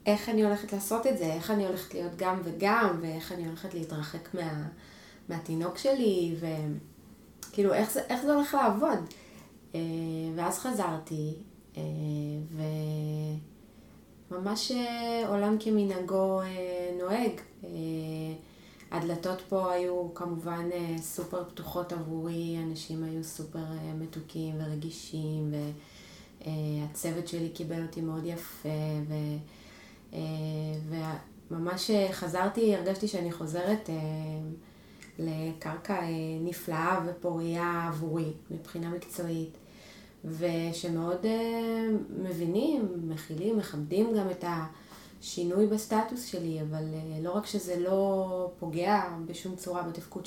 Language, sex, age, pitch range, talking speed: Hebrew, female, 20-39, 160-190 Hz, 95 wpm